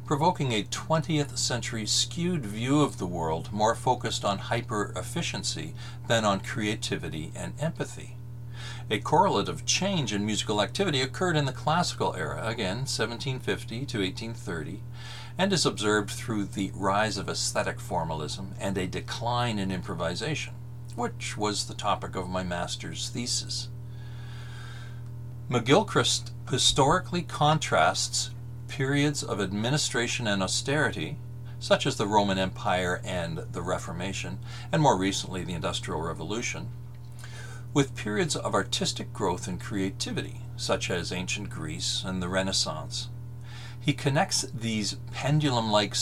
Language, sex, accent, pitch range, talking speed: English, male, American, 110-130 Hz, 125 wpm